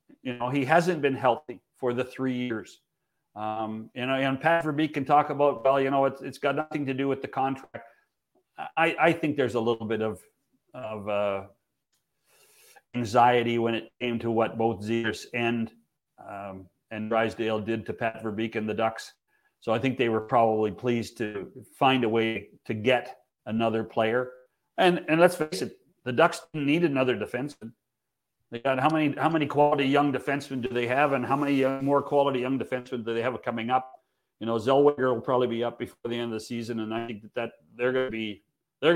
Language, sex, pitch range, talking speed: English, male, 115-145 Hz, 205 wpm